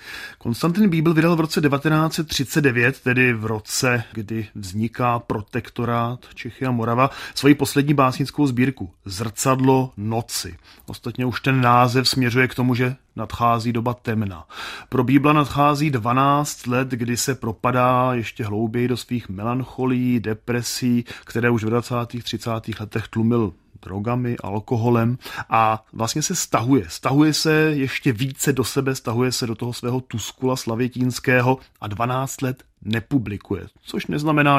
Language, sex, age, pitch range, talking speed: Czech, male, 30-49, 115-140 Hz, 135 wpm